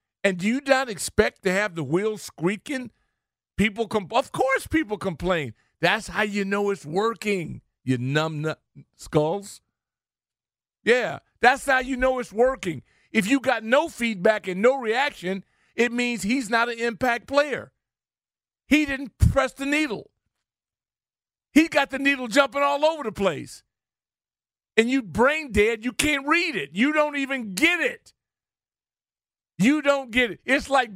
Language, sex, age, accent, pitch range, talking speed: English, male, 50-69, American, 165-265 Hz, 155 wpm